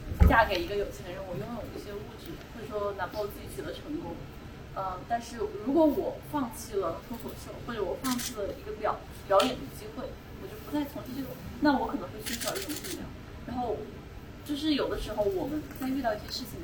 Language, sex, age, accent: Chinese, female, 20-39, native